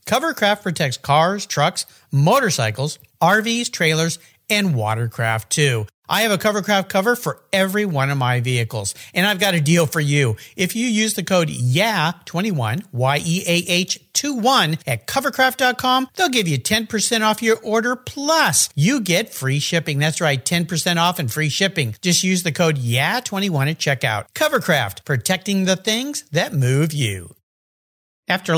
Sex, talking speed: male, 150 wpm